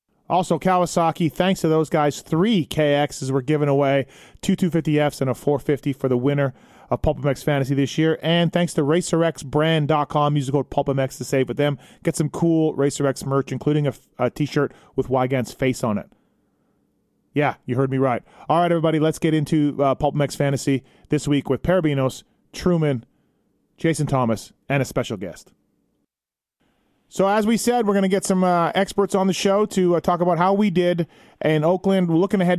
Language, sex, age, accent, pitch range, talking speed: English, male, 30-49, American, 140-175 Hz, 185 wpm